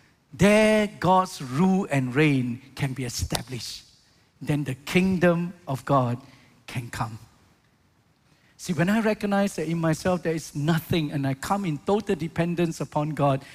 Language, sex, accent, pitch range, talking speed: English, male, Malaysian, 130-175 Hz, 145 wpm